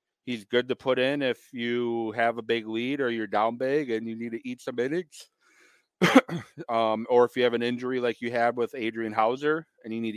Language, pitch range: English, 115-135 Hz